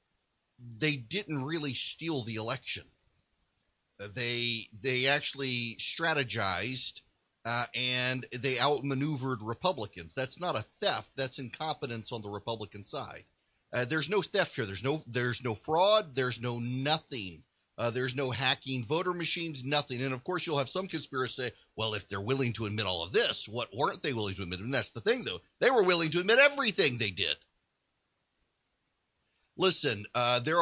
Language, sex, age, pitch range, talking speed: English, male, 40-59, 120-155 Hz, 165 wpm